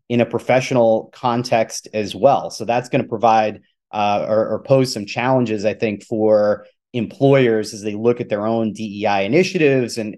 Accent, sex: American, male